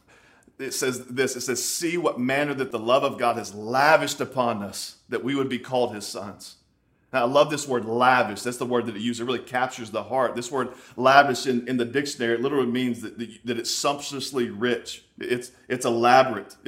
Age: 40-59